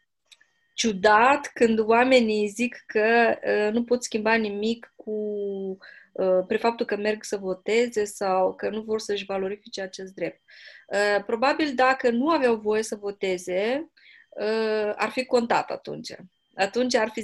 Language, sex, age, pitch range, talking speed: Romanian, female, 20-39, 205-245 Hz, 145 wpm